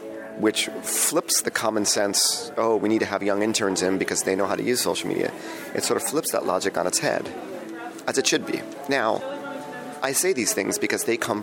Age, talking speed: 30-49, 220 wpm